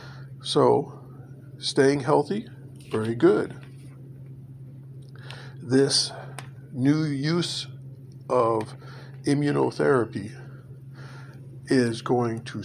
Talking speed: 60 wpm